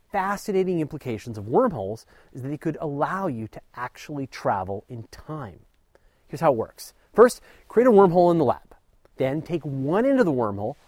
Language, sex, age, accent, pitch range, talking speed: English, male, 30-49, American, 125-180 Hz, 180 wpm